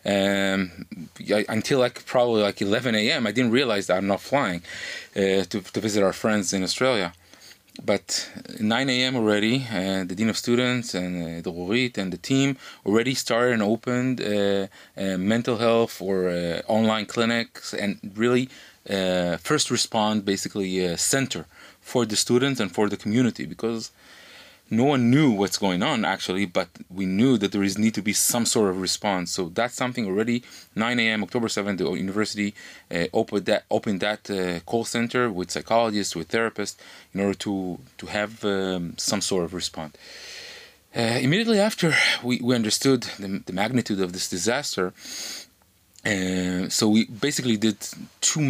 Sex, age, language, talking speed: male, 20-39, Hebrew, 170 wpm